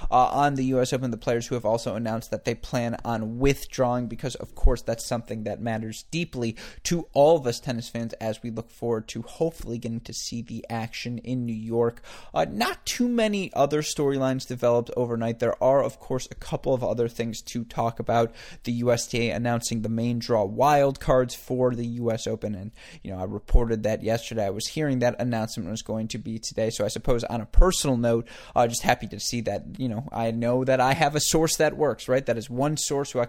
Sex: male